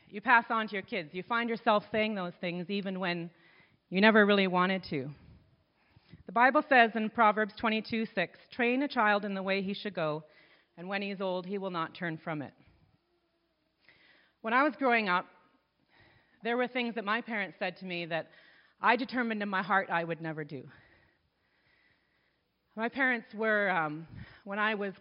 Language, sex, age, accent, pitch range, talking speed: English, female, 40-59, American, 175-225 Hz, 185 wpm